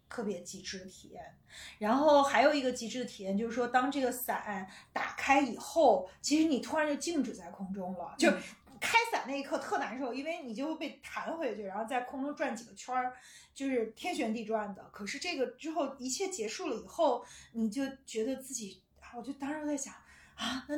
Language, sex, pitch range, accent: Chinese, female, 220-290 Hz, native